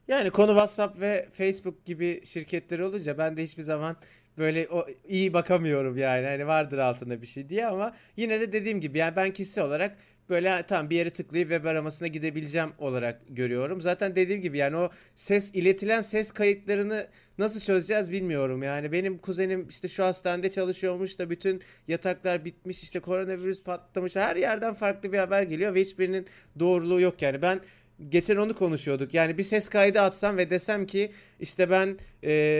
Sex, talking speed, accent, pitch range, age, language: male, 175 wpm, native, 160-200 Hz, 30-49, Turkish